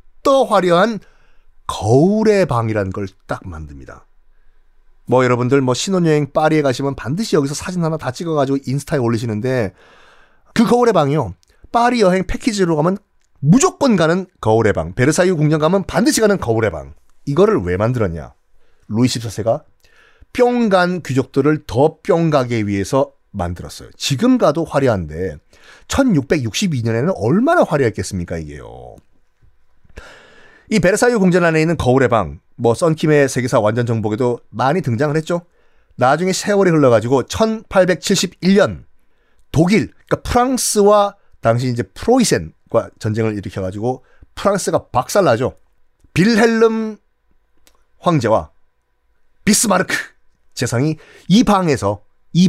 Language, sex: Korean, male